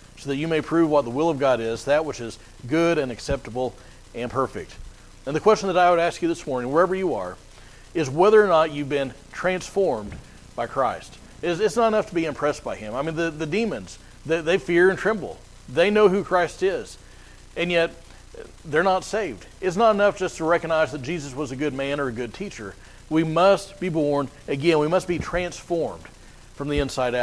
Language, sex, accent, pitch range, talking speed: English, male, American, 120-175 Hz, 215 wpm